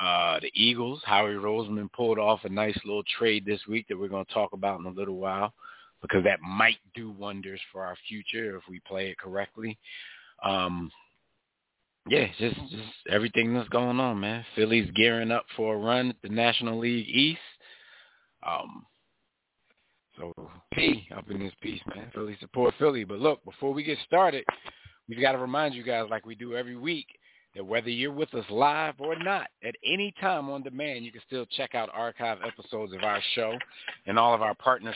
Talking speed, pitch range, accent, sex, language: 190 wpm, 105-120 Hz, American, male, English